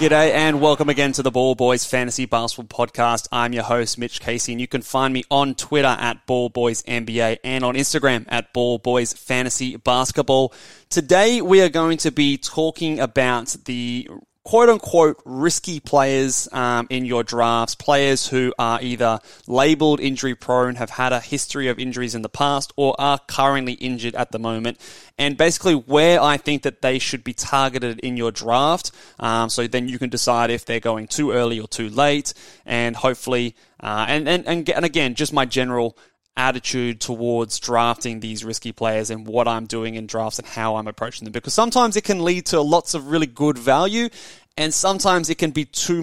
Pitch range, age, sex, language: 120-145 Hz, 20-39, male, English